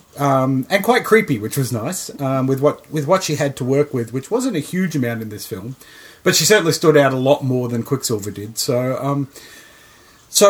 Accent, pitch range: Australian, 120-155 Hz